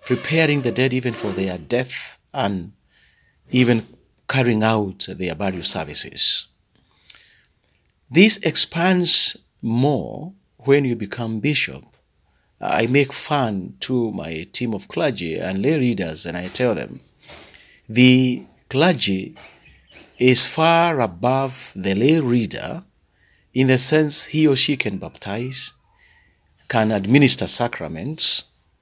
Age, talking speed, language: 40-59, 115 wpm, English